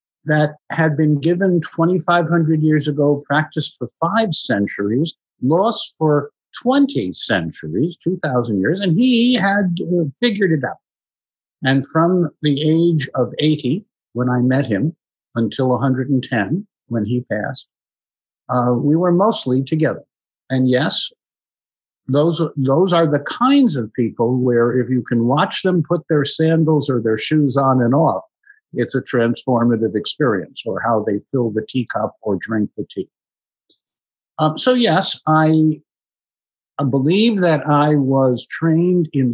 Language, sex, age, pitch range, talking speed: English, male, 50-69, 125-170 Hz, 145 wpm